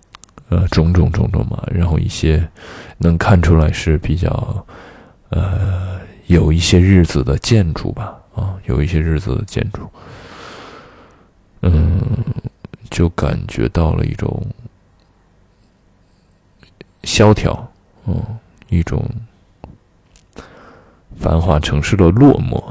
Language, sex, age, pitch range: Chinese, male, 20-39, 85-115 Hz